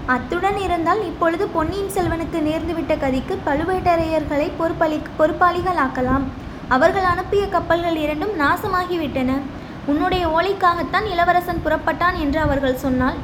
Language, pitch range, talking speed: Tamil, 295-360 Hz, 105 wpm